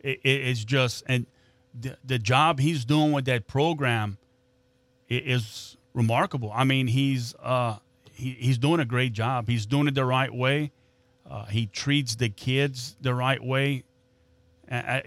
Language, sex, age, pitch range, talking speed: English, male, 30-49, 120-135 Hz, 145 wpm